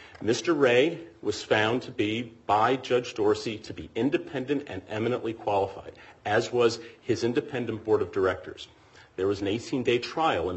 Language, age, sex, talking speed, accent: English, 40-59, male, 160 wpm, American